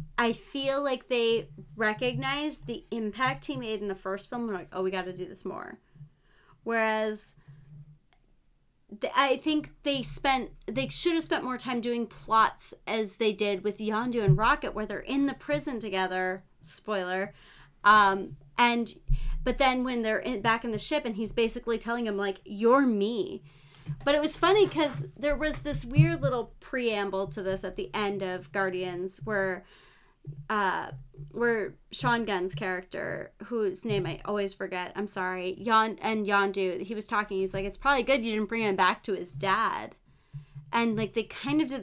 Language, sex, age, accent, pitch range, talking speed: English, female, 30-49, American, 190-250 Hz, 180 wpm